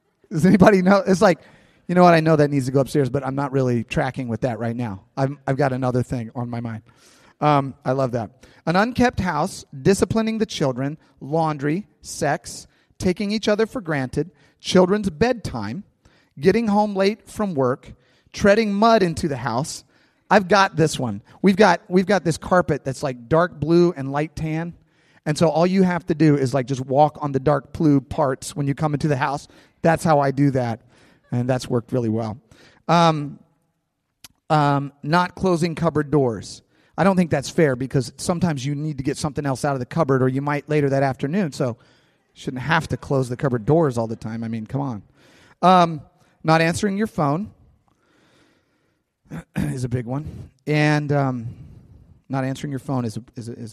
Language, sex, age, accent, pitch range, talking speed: English, male, 30-49, American, 130-175 Hz, 200 wpm